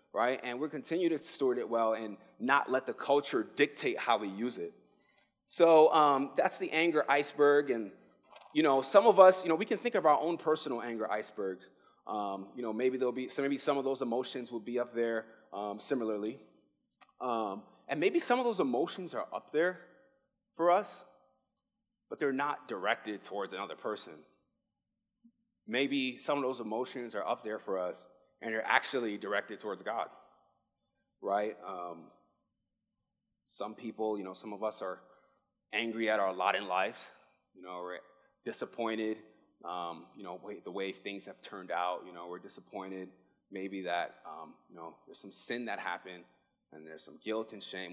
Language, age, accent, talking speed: English, 30-49, American, 180 wpm